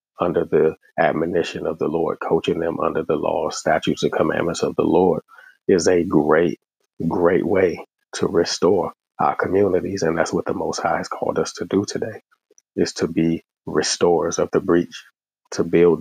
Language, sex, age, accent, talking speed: English, male, 30-49, American, 175 wpm